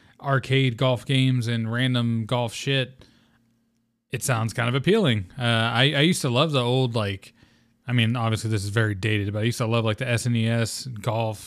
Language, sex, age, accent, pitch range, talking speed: English, male, 20-39, American, 115-130 Hz, 195 wpm